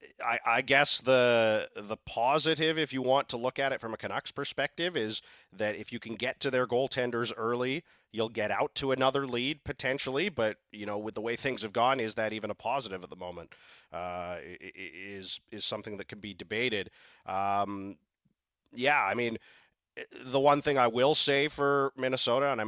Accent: American